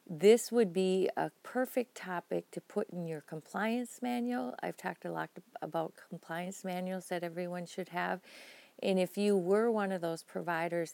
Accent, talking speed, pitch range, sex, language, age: American, 170 wpm, 170-215 Hz, female, English, 40-59